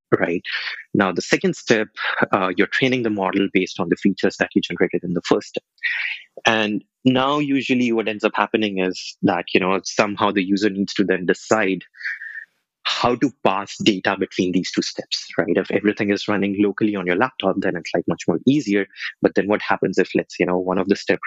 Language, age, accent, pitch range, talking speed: English, 20-39, Indian, 95-110 Hz, 210 wpm